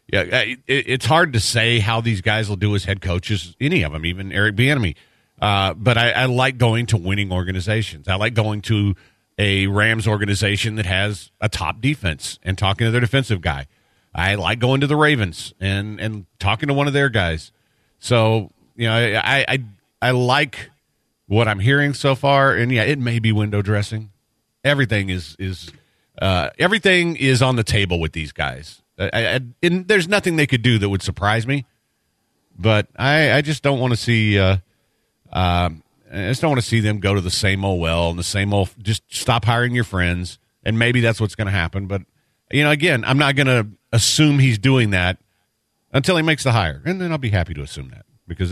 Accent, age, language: American, 40-59, English